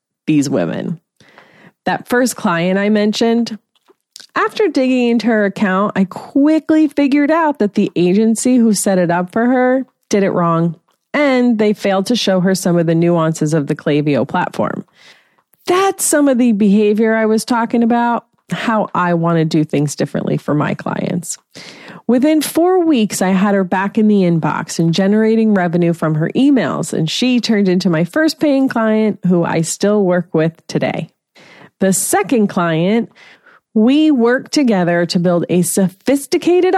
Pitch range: 170-235 Hz